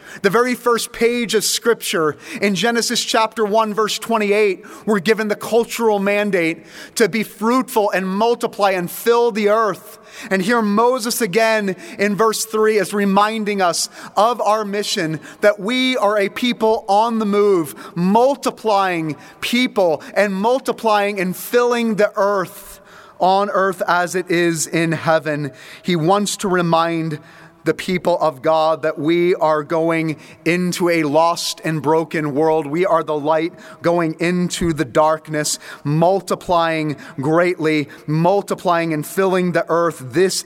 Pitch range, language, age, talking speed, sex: 160-210 Hz, English, 30-49, 145 wpm, male